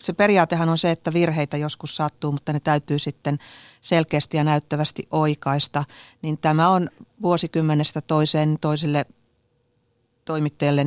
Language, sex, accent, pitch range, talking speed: Finnish, female, native, 140-160 Hz, 125 wpm